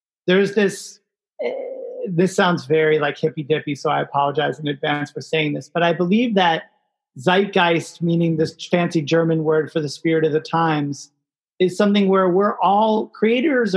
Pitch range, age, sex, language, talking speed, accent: 160-190 Hz, 30-49, male, English, 170 wpm, American